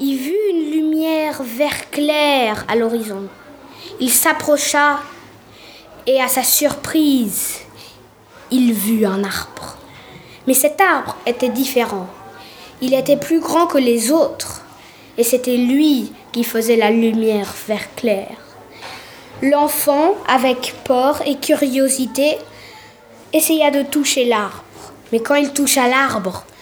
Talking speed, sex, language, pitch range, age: 120 wpm, female, French, 250-310 Hz, 20-39